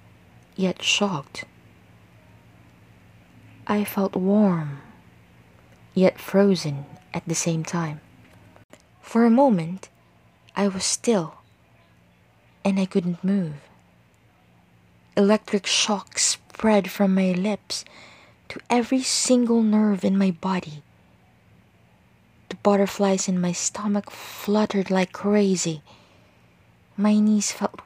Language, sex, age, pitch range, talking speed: English, female, 20-39, 170-210 Hz, 95 wpm